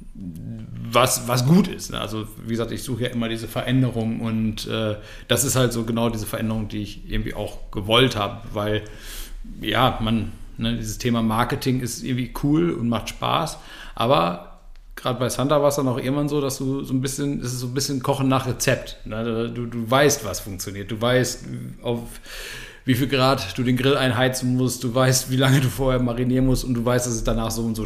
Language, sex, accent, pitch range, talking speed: German, male, German, 110-130 Hz, 210 wpm